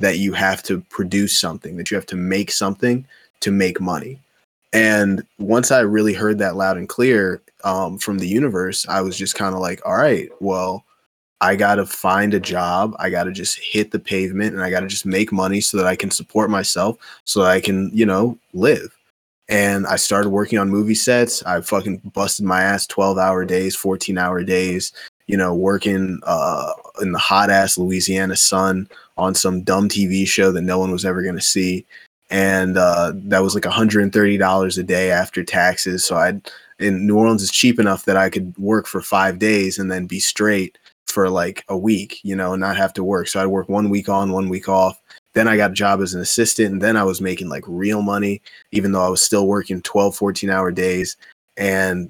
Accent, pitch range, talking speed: American, 95-100 Hz, 215 wpm